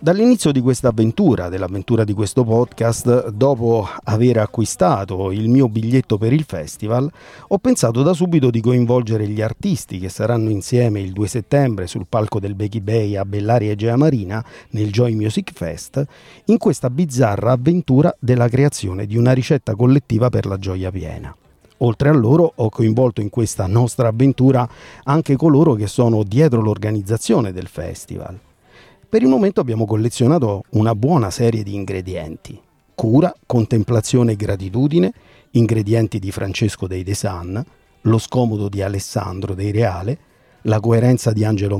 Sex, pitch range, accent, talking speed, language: male, 105-130 Hz, native, 150 wpm, Italian